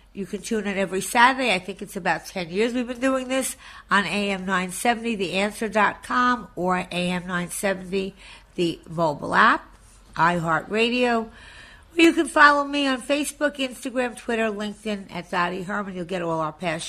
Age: 60-79